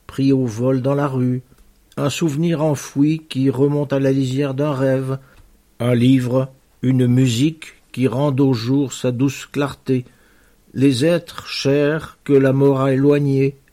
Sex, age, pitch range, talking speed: male, 60-79, 125-140 Hz, 155 wpm